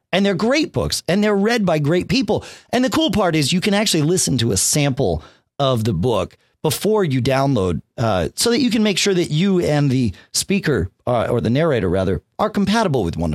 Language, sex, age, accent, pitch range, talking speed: English, male, 40-59, American, 125-185 Hz, 220 wpm